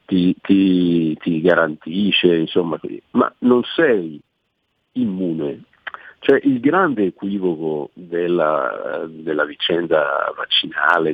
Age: 50-69